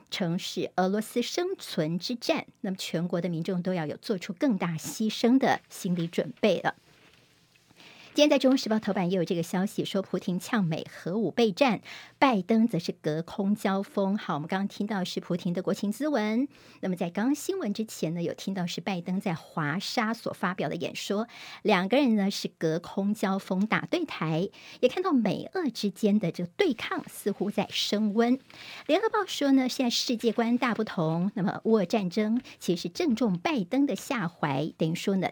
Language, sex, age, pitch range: Chinese, male, 50-69, 180-235 Hz